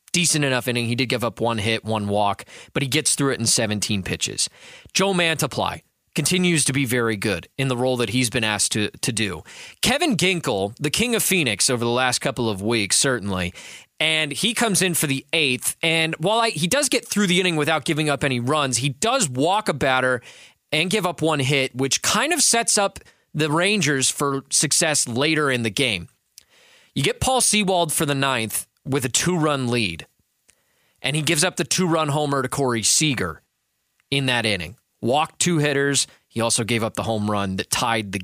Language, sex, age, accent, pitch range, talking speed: English, male, 20-39, American, 115-165 Hz, 205 wpm